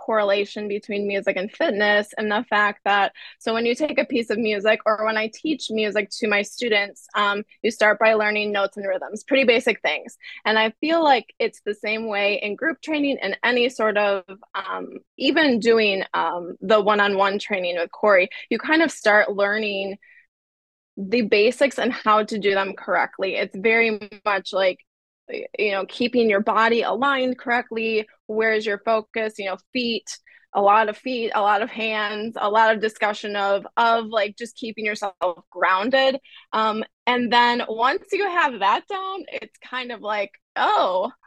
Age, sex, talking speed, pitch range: 20-39, female, 175 wpm, 205-250 Hz